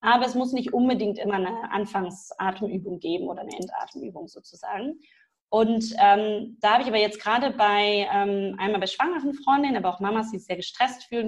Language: German